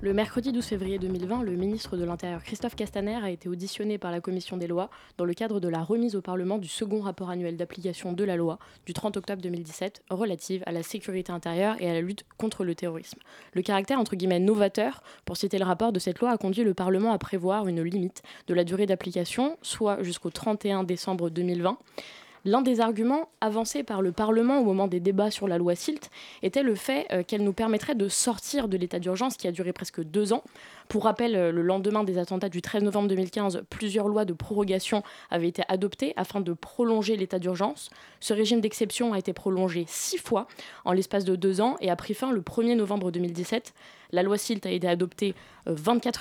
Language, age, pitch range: French, 20-39, 180-220 Hz